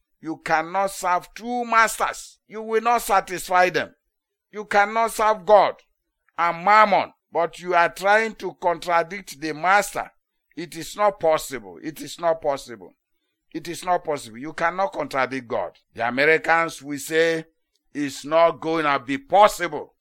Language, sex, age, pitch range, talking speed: English, male, 60-79, 165-205 Hz, 150 wpm